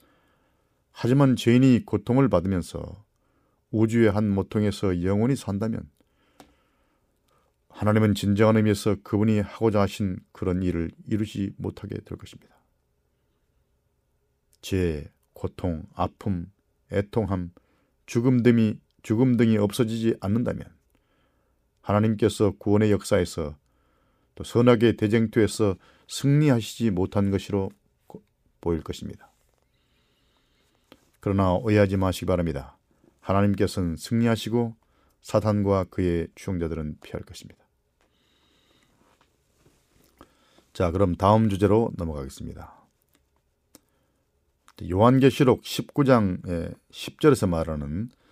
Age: 40-59